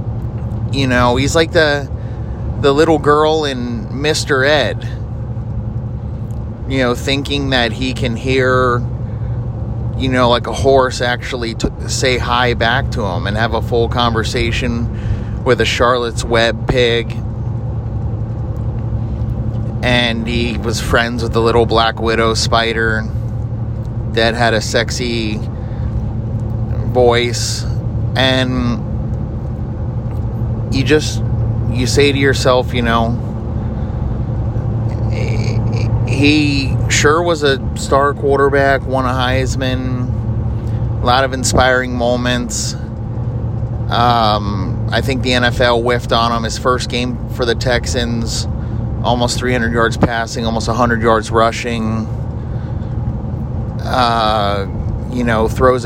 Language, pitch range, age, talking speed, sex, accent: English, 115-125 Hz, 30-49, 110 wpm, male, American